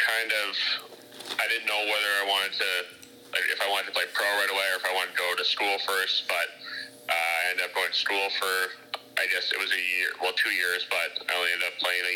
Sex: male